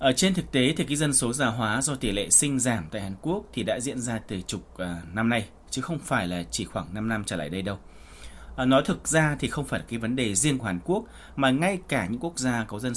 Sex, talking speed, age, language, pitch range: male, 275 wpm, 20-39, Vietnamese, 105-155 Hz